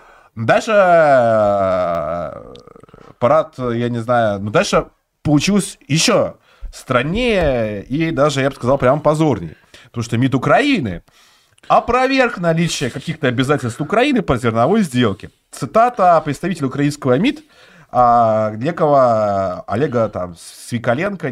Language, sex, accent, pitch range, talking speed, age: Russian, male, native, 110-160 Hz, 105 wpm, 30-49